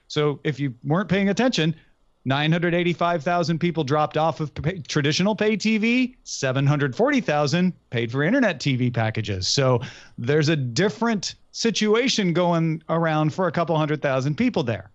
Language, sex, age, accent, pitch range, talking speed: English, male, 40-59, American, 135-180 Hz, 140 wpm